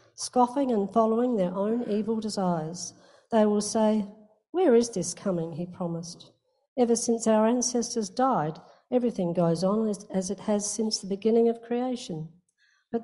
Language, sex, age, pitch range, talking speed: English, female, 60-79, 175-230 Hz, 150 wpm